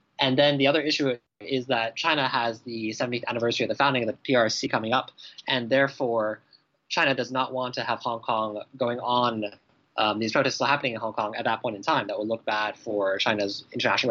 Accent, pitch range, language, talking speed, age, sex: American, 105-130 Hz, English, 220 wpm, 20-39, male